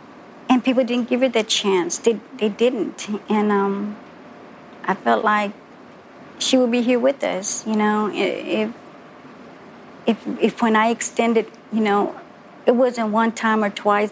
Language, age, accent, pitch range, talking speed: English, 50-69, American, 210-245 Hz, 155 wpm